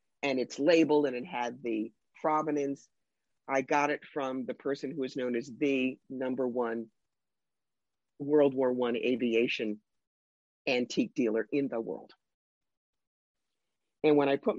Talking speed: 140 wpm